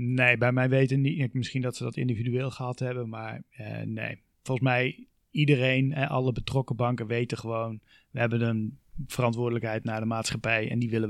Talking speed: 180 wpm